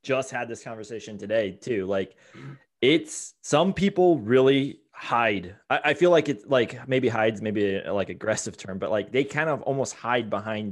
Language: English